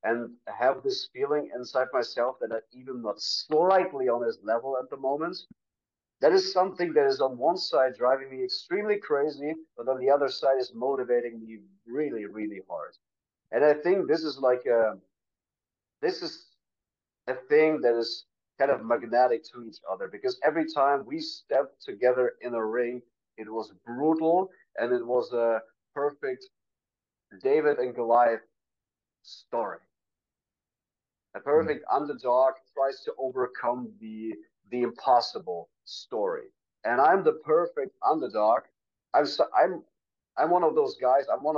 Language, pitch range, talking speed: English, 120-190 Hz, 150 wpm